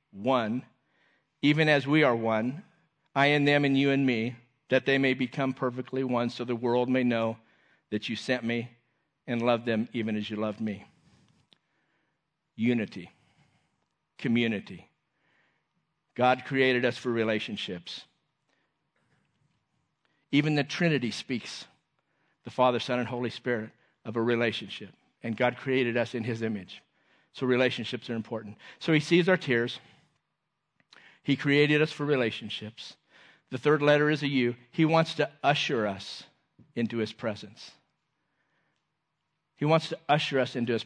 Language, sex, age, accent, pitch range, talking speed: English, male, 50-69, American, 120-150 Hz, 145 wpm